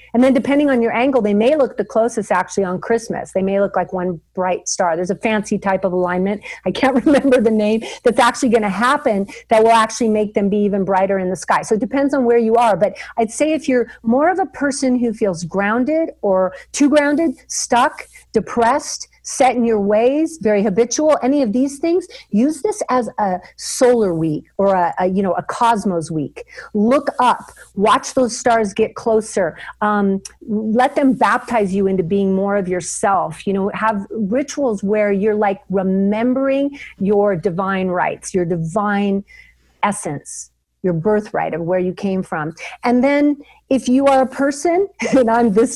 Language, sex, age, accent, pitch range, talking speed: English, female, 50-69, American, 200-265 Hz, 190 wpm